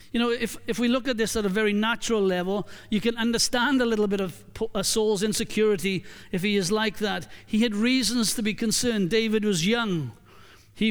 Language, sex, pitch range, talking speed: English, male, 175-220 Hz, 205 wpm